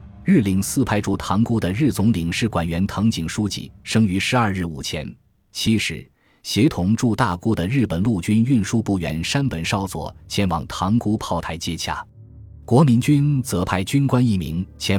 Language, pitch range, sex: Chinese, 85-110 Hz, male